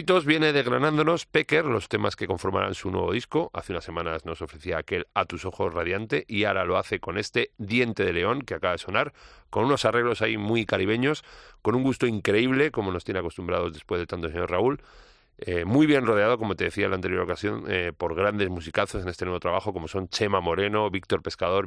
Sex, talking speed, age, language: male, 215 wpm, 40-59, Spanish